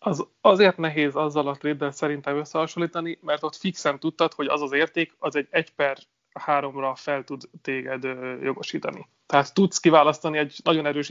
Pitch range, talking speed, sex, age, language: 145-165 Hz, 175 wpm, male, 30-49, Hungarian